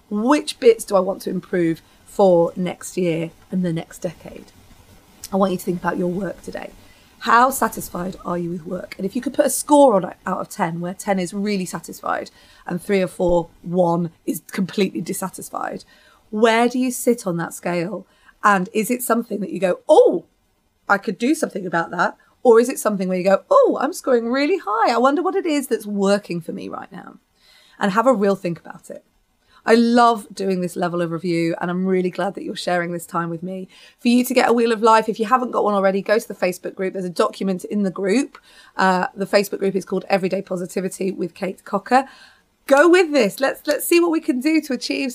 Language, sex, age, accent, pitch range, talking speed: English, female, 30-49, British, 180-245 Hz, 225 wpm